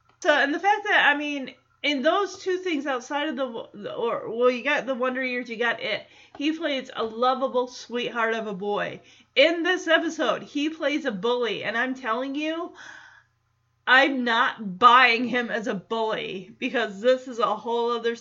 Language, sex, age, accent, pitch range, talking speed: English, female, 30-49, American, 215-275 Hz, 190 wpm